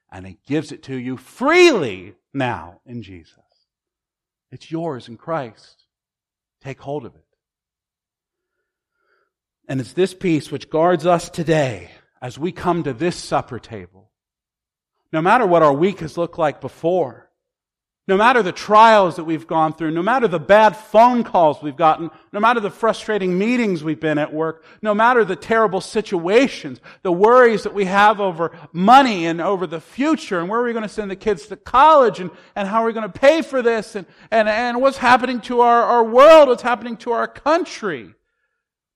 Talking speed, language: 180 wpm, English